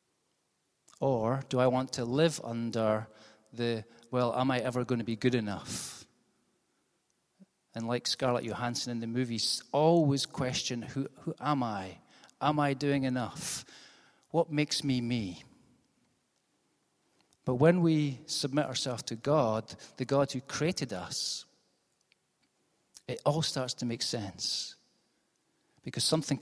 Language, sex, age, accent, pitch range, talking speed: English, male, 40-59, British, 115-145 Hz, 130 wpm